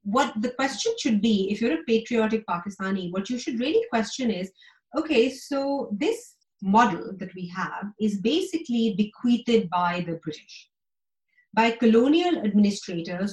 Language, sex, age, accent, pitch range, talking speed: English, female, 30-49, Indian, 185-245 Hz, 145 wpm